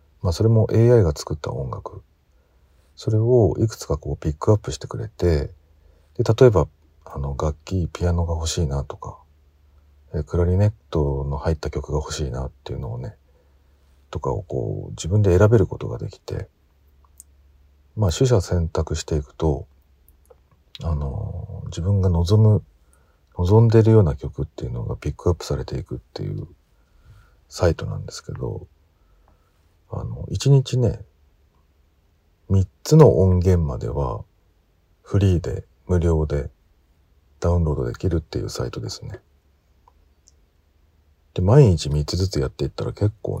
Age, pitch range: 40-59, 75-100 Hz